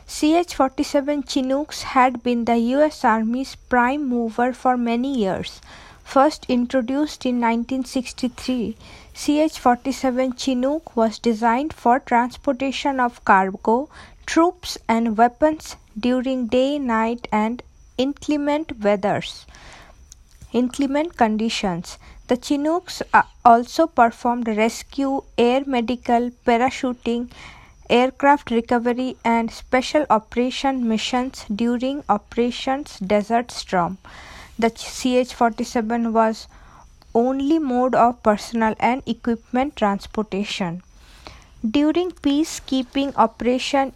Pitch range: 230-275 Hz